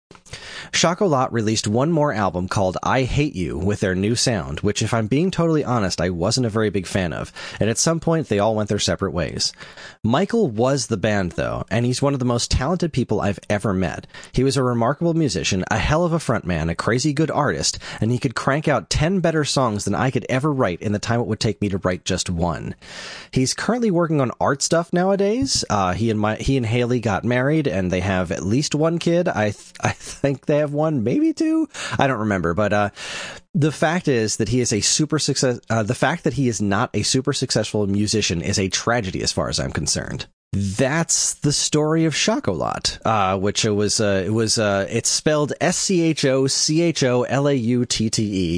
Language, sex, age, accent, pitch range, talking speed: English, male, 30-49, American, 100-145 Hz, 210 wpm